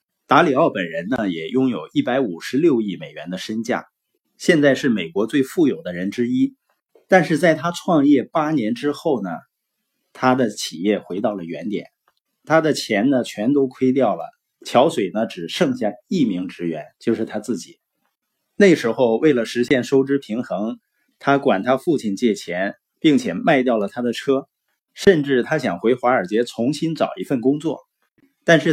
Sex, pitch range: male, 115-170 Hz